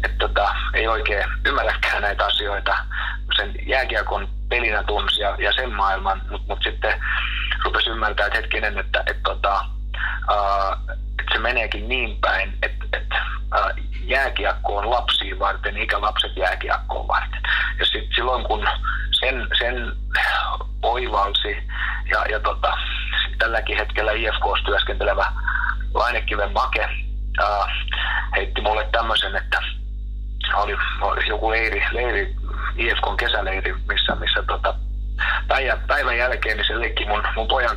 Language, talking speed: Finnish, 120 wpm